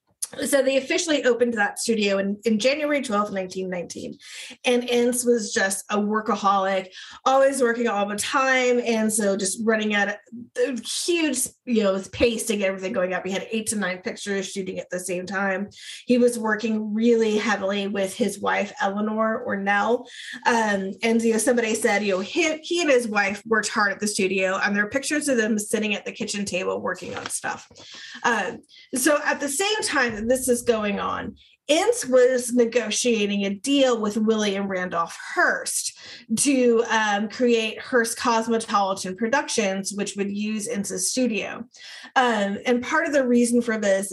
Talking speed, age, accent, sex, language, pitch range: 175 wpm, 30-49, American, female, English, 200-250 Hz